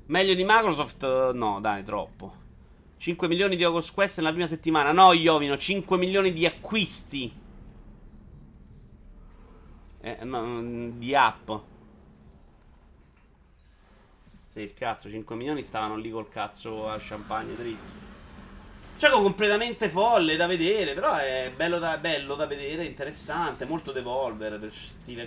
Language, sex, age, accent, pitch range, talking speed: Italian, male, 30-49, native, 115-175 Hz, 125 wpm